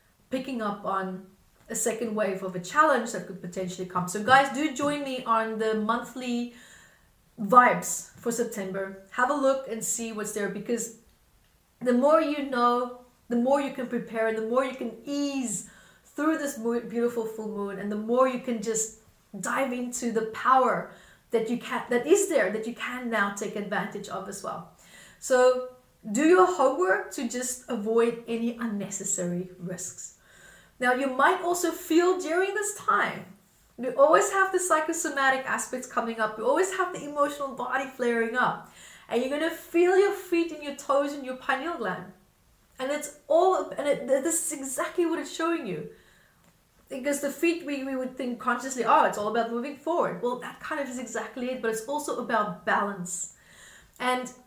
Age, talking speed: 30-49, 180 wpm